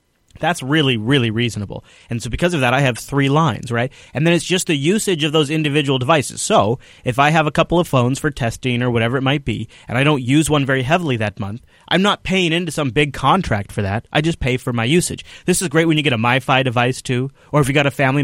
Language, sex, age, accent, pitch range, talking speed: English, male, 30-49, American, 120-155 Hz, 260 wpm